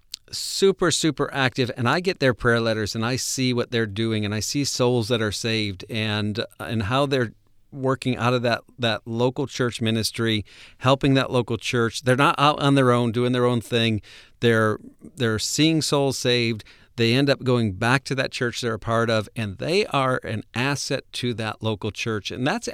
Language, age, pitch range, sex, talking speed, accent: English, 50-69, 110-130 Hz, male, 200 wpm, American